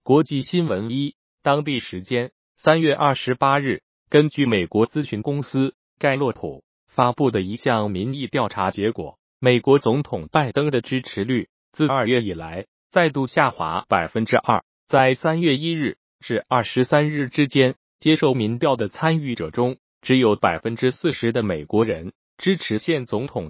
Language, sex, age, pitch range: Chinese, male, 30-49, 115-150 Hz